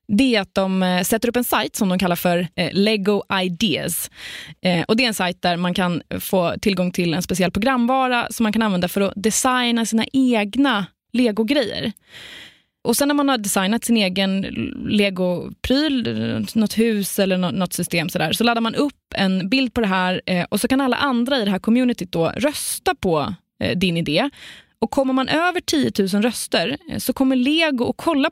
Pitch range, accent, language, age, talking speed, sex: 180-235 Hz, native, Swedish, 20-39, 185 wpm, female